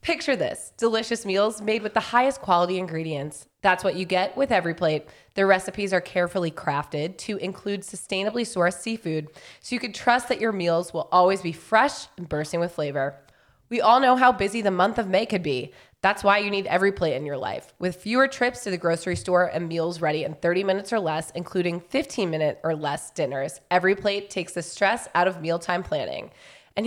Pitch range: 175-225 Hz